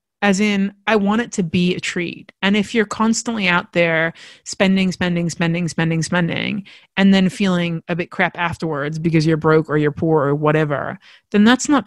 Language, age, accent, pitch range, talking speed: English, 30-49, American, 170-215 Hz, 210 wpm